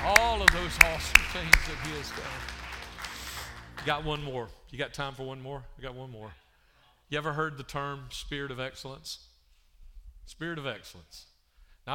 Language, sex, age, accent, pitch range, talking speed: English, male, 40-59, American, 110-155 Hz, 175 wpm